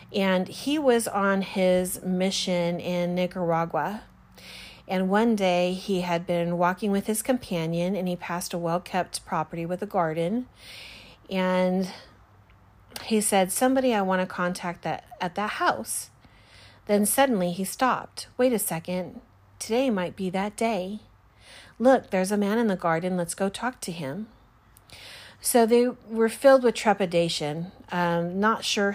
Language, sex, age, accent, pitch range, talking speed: English, female, 40-59, American, 170-200 Hz, 150 wpm